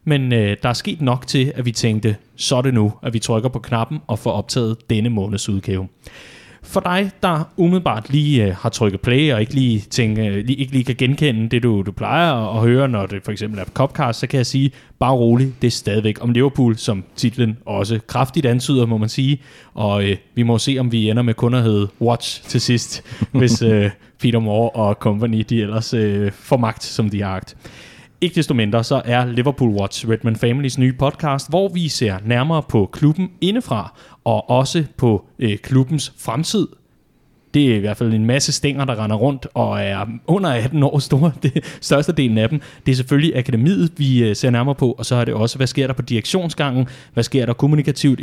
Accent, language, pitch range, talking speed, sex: native, Danish, 110-135 Hz, 210 wpm, male